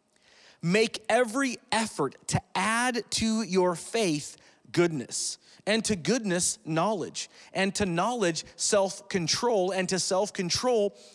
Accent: American